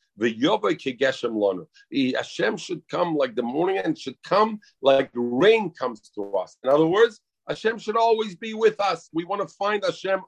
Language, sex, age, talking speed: English, male, 50-69, 185 wpm